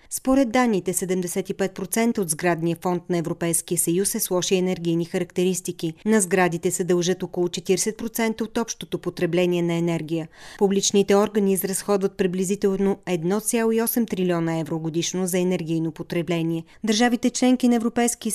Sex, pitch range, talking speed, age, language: female, 175-220 Hz, 130 wpm, 30-49, Bulgarian